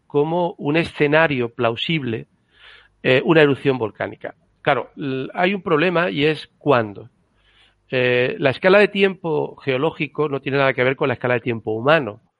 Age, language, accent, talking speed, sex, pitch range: 50-69, Spanish, Spanish, 160 wpm, male, 125-155 Hz